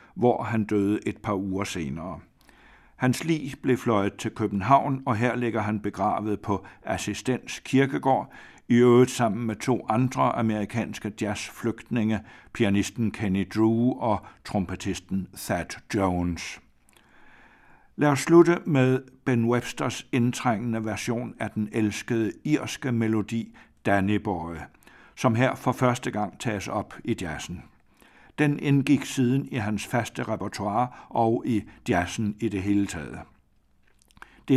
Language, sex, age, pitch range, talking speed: Danish, male, 60-79, 105-130 Hz, 130 wpm